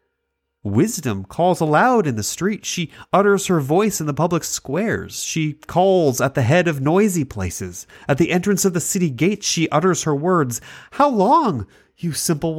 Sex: male